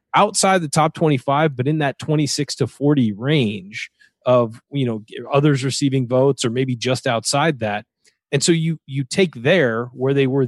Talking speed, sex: 180 wpm, male